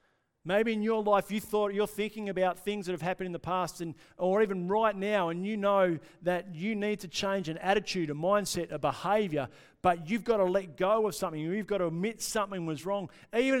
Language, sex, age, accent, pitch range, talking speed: English, male, 50-69, Australian, 155-200 Hz, 230 wpm